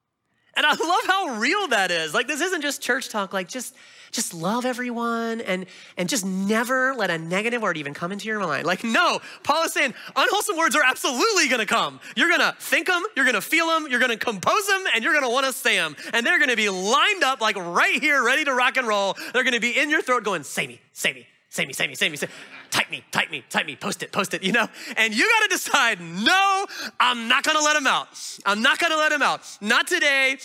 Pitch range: 195-280 Hz